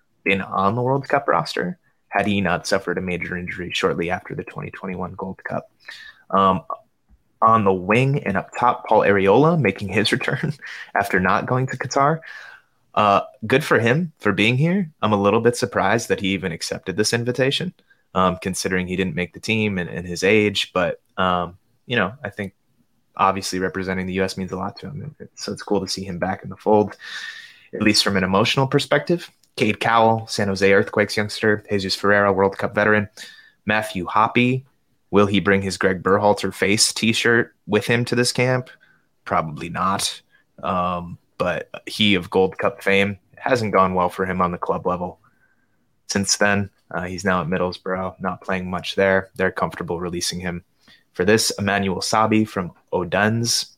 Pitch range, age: 95-115 Hz, 20-39